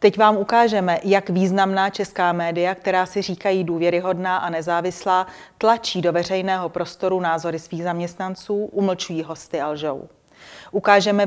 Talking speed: 130 wpm